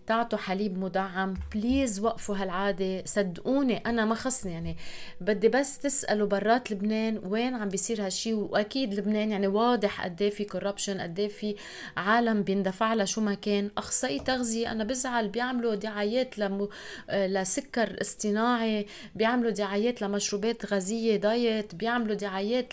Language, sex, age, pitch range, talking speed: Arabic, female, 20-39, 200-235 Hz, 130 wpm